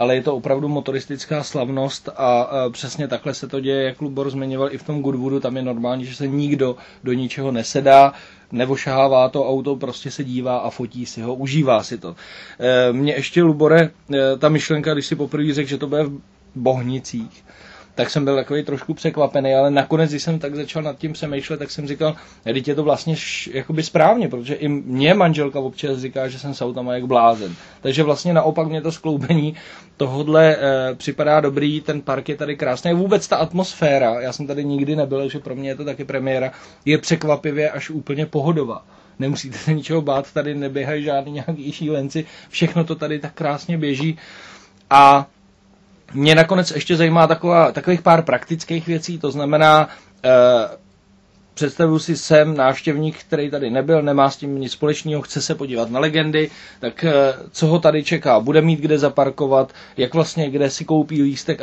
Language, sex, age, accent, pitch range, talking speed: Czech, male, 20-39, native, 135-155 Hz, 180 wpm